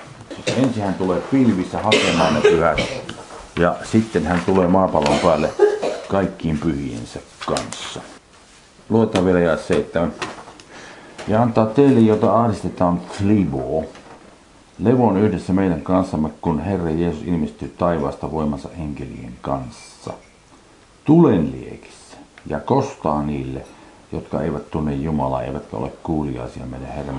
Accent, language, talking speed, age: native, Finnish, 115 wpm, 50-69